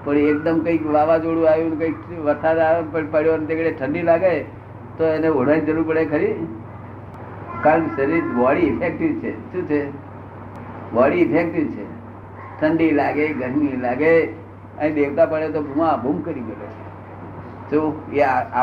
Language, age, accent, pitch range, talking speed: Gujarati, 50-69, native, 110-160 Hz, 50 wpm